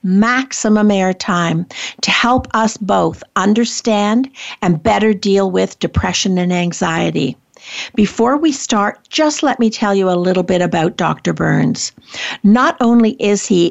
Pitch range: 185-225 Hz